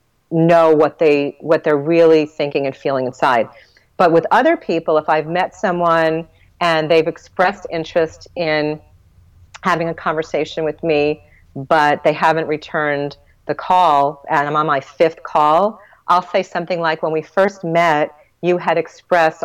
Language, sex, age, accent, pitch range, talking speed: English, female, 40-59, American, 150-170 Hz, 155 wpm